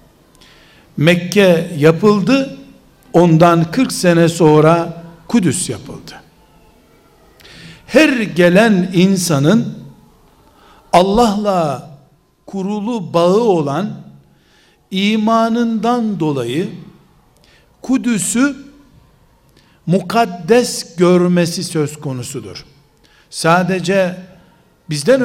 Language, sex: Turkish, male